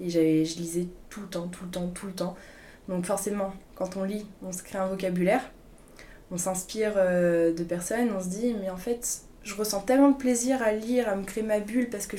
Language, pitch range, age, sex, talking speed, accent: French, 185-220 Hz, 20-39, female, 235 wpm, French